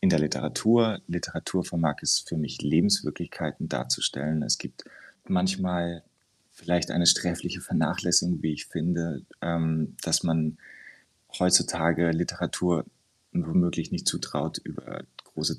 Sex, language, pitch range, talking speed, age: male, German, 75-85 Hz, 110 wpm, 30-49